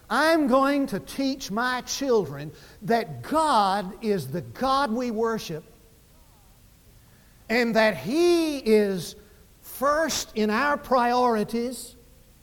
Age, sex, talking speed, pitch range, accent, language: 50-69, male, 100 wpm, 200-280 Hz, American, English